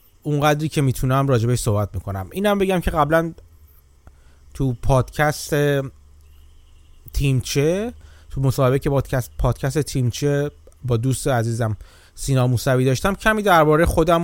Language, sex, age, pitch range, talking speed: Persian, male, 30-49, 115-150 Hz, 120 wpm